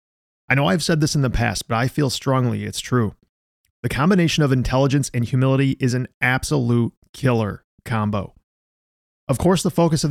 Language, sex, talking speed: English, male, 180 wpm